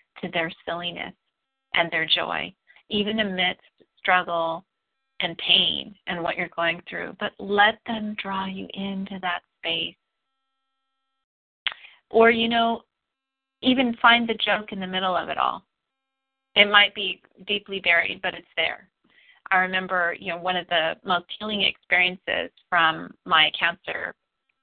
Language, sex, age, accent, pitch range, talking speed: English, female, 30-49, American, 175-235 Hz, 140 wpm